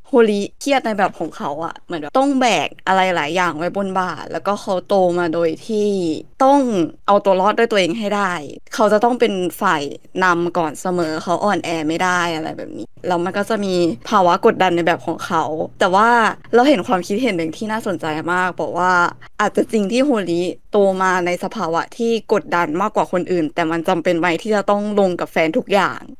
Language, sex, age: Thai, female, 20-39